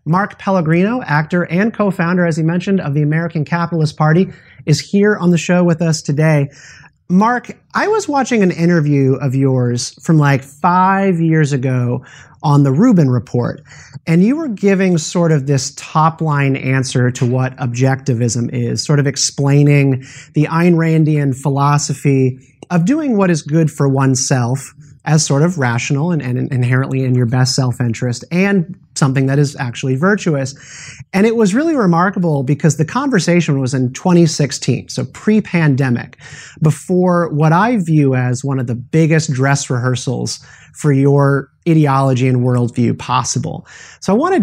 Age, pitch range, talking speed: 30-49, 130-170 Hz, 155 wpm